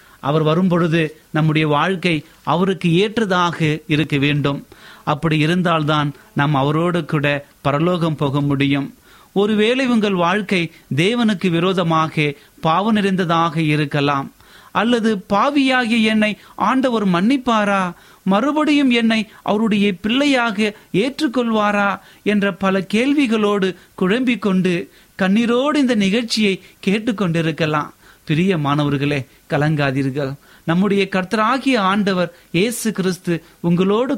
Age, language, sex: 30-49, Tamil, male